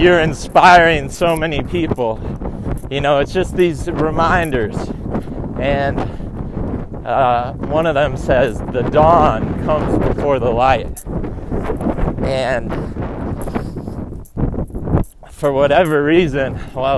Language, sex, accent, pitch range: English, male, American, 135-175 Hz